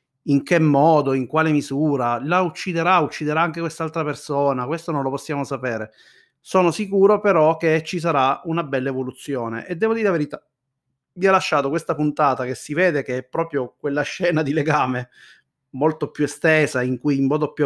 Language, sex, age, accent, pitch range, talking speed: Italian, male, 30-49, native, 135-165 Hz, 185 wpm